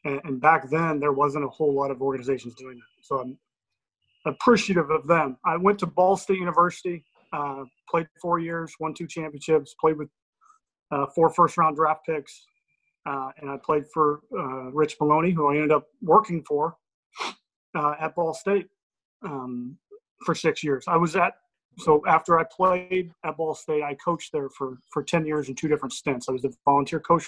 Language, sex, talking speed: English, male, 190 wpm